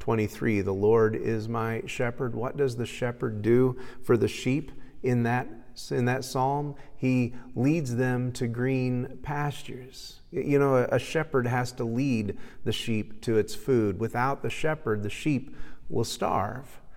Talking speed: 160 wpm